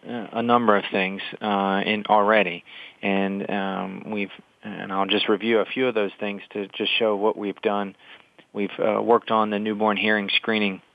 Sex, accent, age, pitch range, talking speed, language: male, American, 30-49, 95-105 Hz, 180 wpm, English